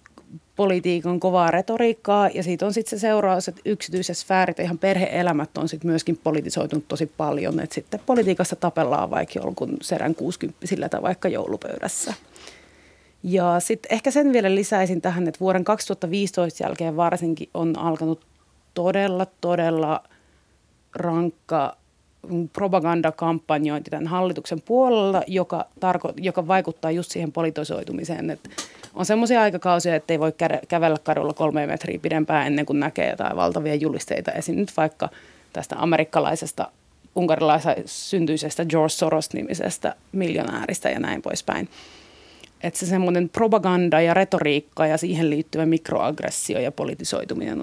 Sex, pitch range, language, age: female, 155-185 Hz, Finnish, 30-49